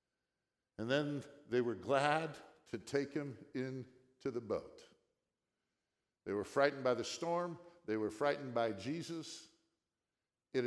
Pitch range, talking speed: 125-180 Hz, 130 wpm